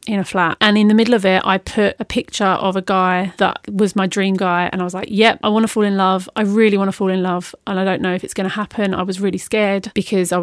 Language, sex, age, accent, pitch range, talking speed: English, female, 30-49, British, 185-215 Hz, 310 wpm